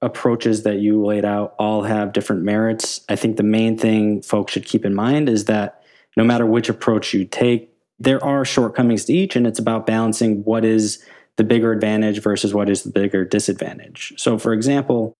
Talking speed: 195 wpm